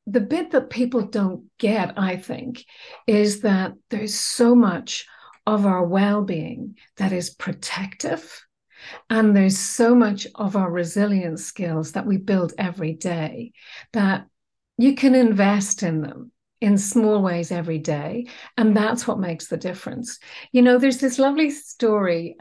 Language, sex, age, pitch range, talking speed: English, female, 50-69, 175-235 Hz, 145 wpm